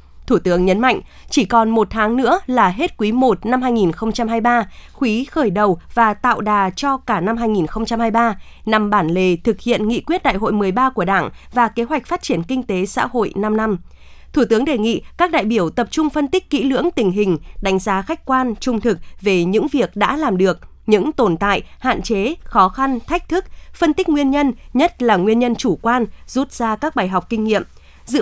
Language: Vietnamese